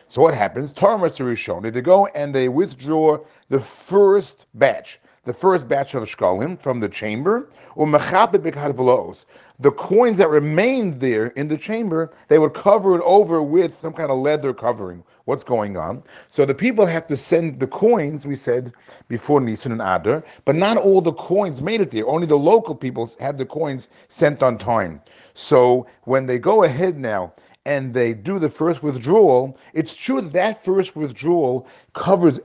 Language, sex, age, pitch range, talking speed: English, male, 40-59, 130-185 Hz, 175 wpm